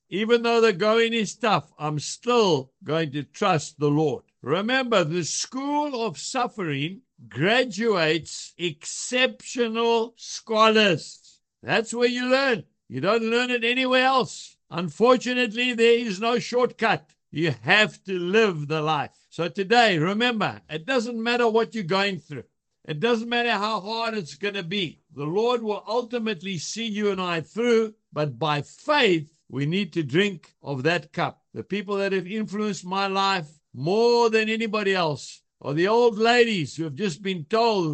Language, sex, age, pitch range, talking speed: English, male, 60-79, 155-225 Hz, 160 wpm